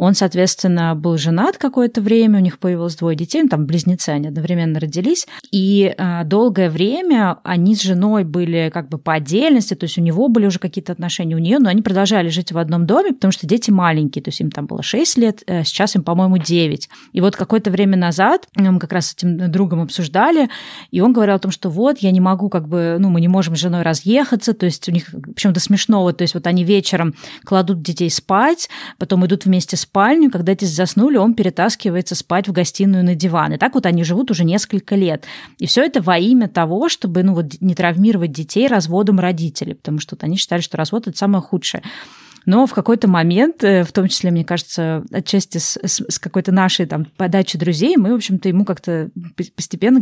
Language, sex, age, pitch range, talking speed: Russian, female, 20-39, 175-205 Hz, 205 wpm